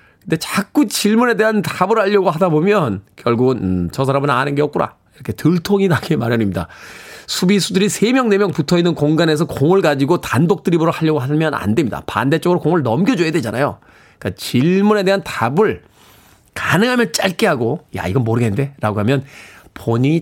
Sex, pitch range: male, 135-205 Hz